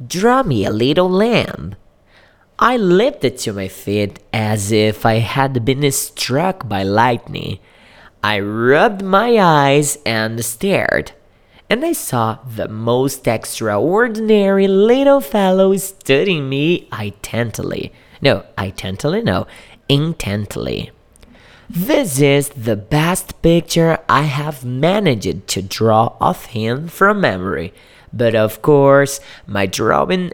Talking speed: 115 wpm